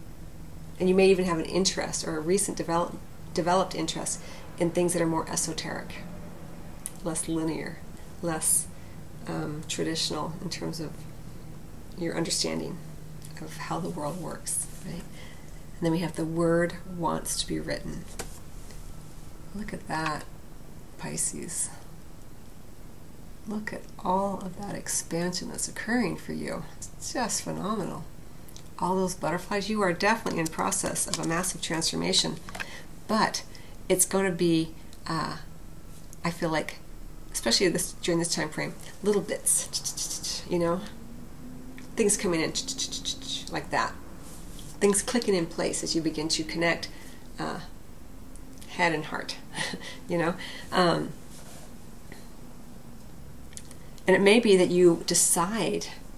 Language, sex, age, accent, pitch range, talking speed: English, female, 40-59, American, 160-185 Hz, 130 wpm